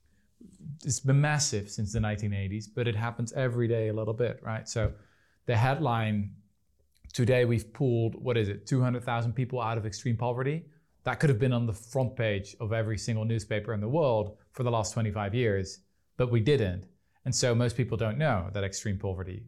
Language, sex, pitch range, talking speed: Finnish, male, 110-140 Hz, 190 wpm